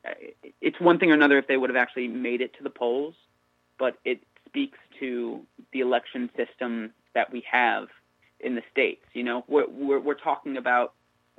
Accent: American